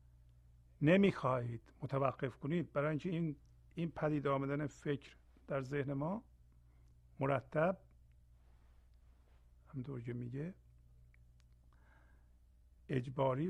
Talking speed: 85 wpm